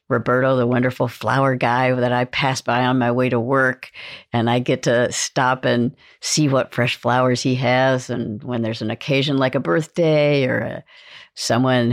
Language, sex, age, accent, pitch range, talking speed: English, female, 60-79, American, 120-150 Hz, 185 wpm